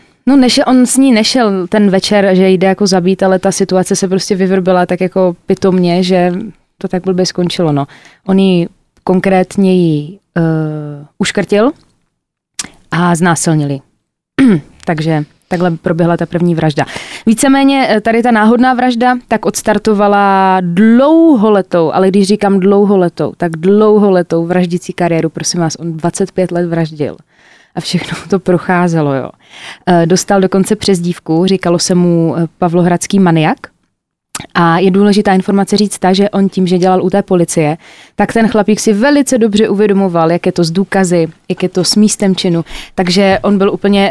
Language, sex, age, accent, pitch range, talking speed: Czech, female, 20-39, native, 175-200 Hz, 155 wpm